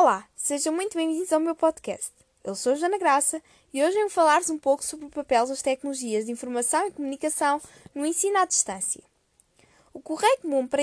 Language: Portuguese